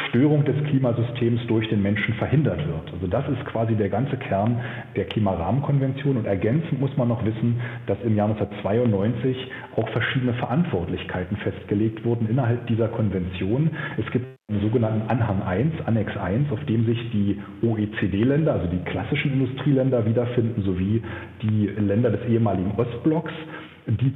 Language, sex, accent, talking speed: German, male, German, 145 wpm